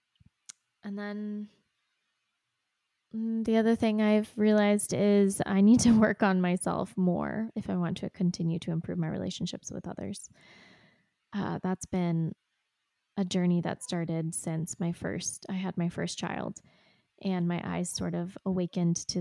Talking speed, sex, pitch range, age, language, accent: 150 wpm, female, 170-195 Hz, 20-39, English, American